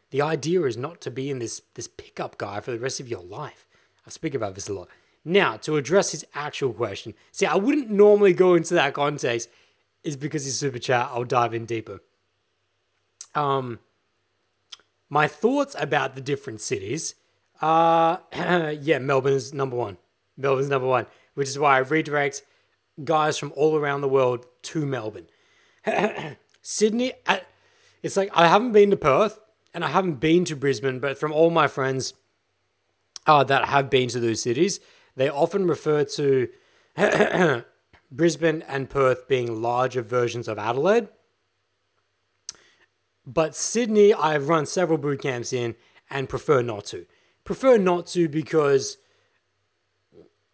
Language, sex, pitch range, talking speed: English, male, 130-180 Hz, 155 wpm